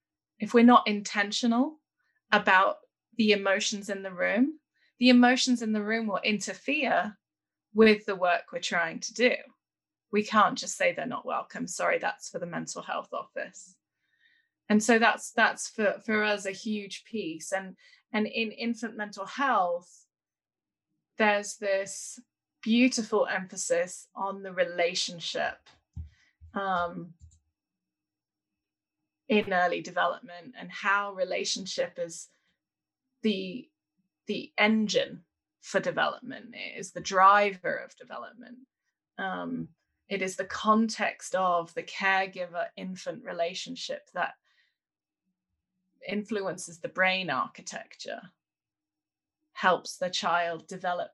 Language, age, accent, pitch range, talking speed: English, 20-39, British, 185-235 Hz, 115 wpm